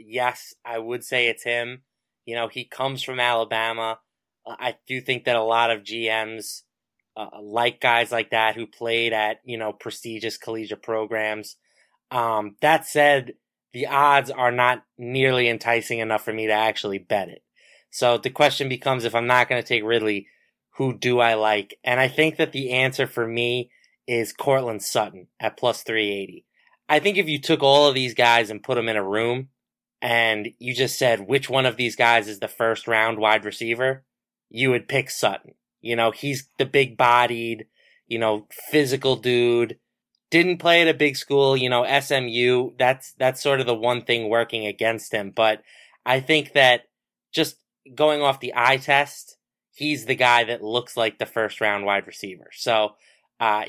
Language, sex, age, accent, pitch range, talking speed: English, male, 20-39, American, 115-135 Hz, 185 wpm